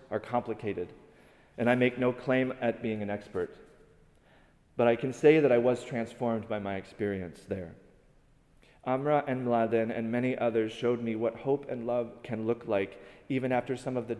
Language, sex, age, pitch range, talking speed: English, male, 30-49, 105-125 Hz, 180 wpm